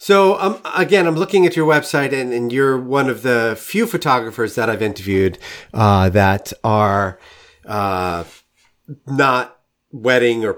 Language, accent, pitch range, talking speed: English, American, 95-135 Hz, 145 wpm